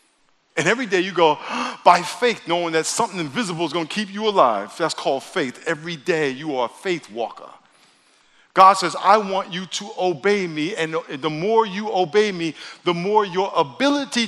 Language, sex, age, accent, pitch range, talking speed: English, male, 50-69, American, 165-215 Hz, 190 wpm